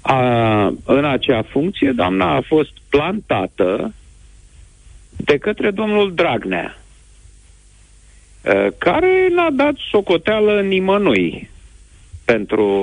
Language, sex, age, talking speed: Romanian, male, 50-69, 85 wpm